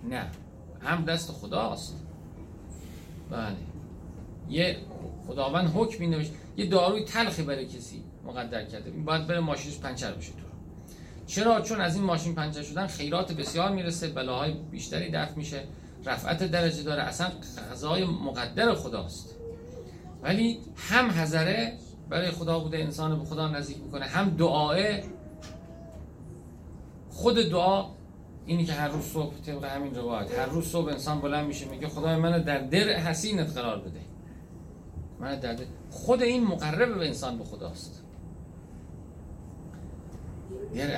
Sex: male